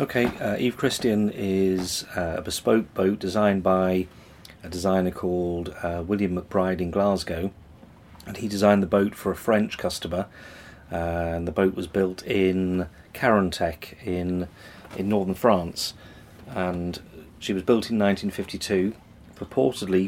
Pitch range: 90-100 Hz